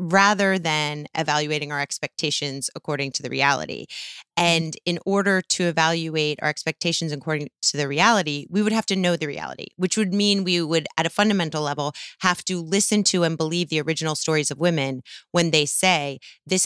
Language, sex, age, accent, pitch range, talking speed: English, female, 30-49, American, 160-205 Hz, 185 wpm